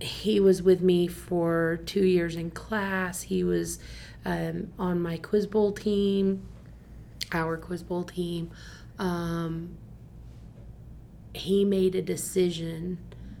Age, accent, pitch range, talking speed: 30-49, American, 165-180 Hz, 115 wpm